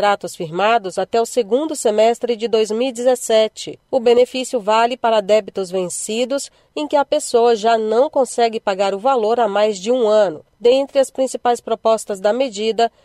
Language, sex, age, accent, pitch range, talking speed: Portuguese, female, 40-59, Brazilian, 215-255 Hz, 160 wpm